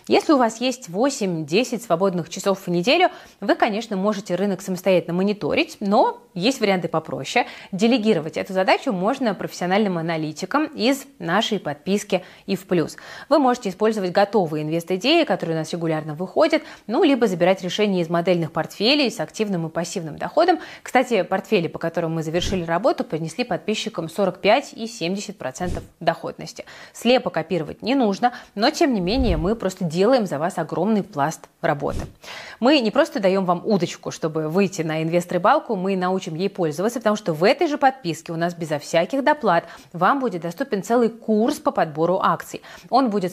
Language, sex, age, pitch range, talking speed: Russian, female, 20-39, 170-240 Hz, 160 wpm